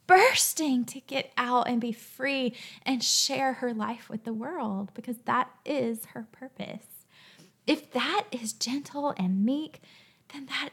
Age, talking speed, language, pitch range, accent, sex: 10-29, 150 wpm, English, 215-290 Hz, American, female